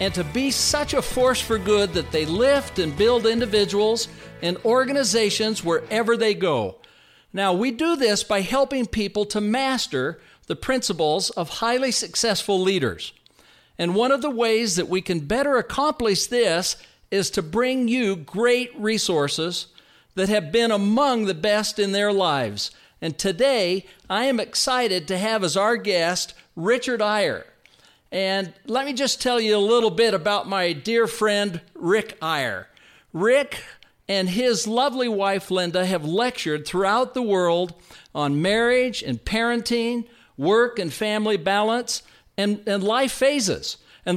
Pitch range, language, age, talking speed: 190-245 Hz, English, 50-69, 150 wpm